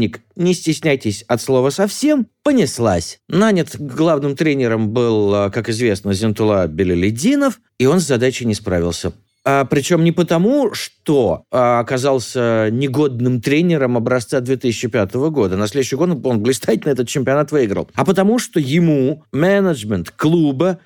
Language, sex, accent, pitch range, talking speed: Russian, male, native, 125-185 Hz, 130 wpm